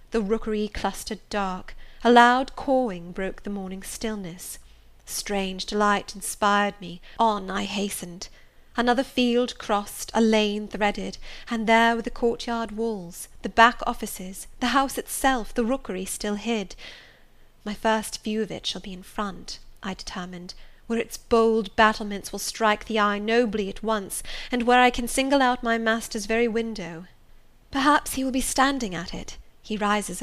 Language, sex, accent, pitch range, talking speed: English, female, British, 200-240 Hz, 160 wpm